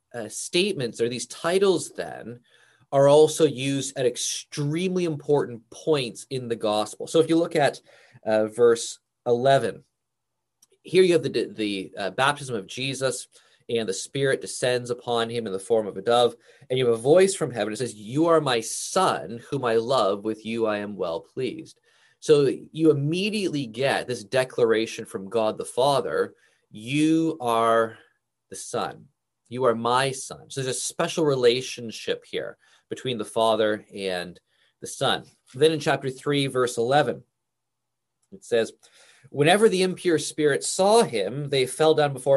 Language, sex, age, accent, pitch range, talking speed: English, male, 20-39, American, 120-170 Hz, 165 wpm